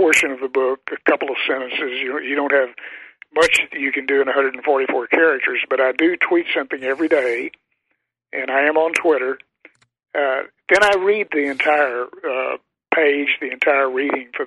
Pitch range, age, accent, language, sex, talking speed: 135-160 Hz, 60-79, American, English, male, 185 wpm